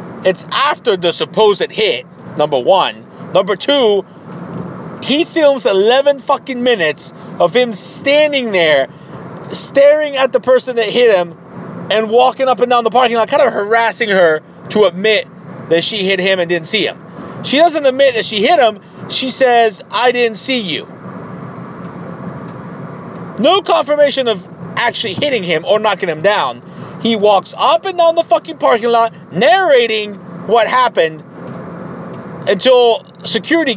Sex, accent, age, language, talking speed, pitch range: male, American, 30-49, English, 150 wpm, 180-255 Hz